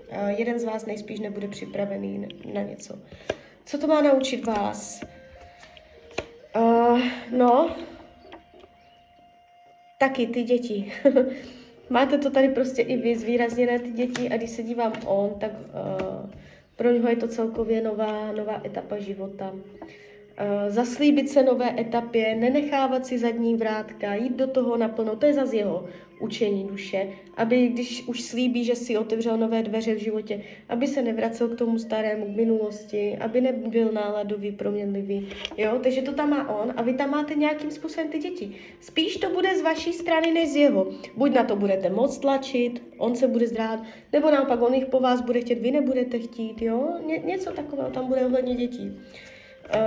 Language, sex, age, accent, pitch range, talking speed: Czech, female, 20-39, native, 220-265 Hz, 165 wpm